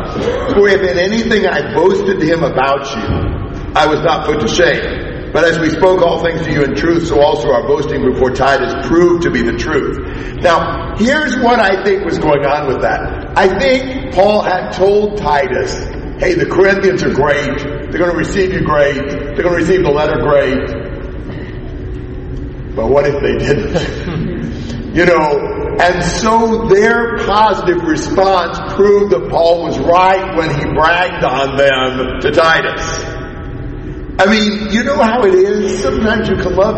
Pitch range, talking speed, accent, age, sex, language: 145-190 Hz, 175 wpm, American, 50-69, male, English